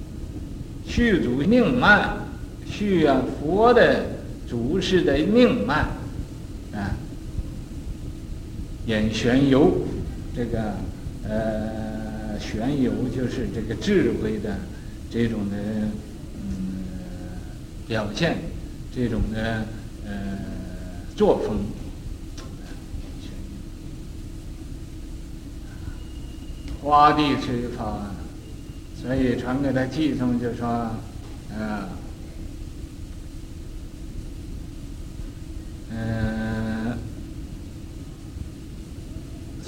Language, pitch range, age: Chinese, 100-130 Hz, 60-79